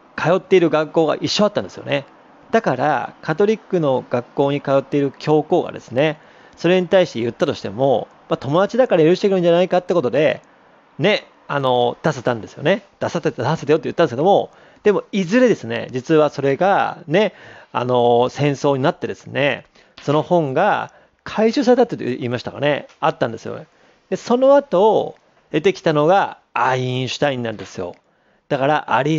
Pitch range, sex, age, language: 135-185 Hz, male, 40-59, Japanese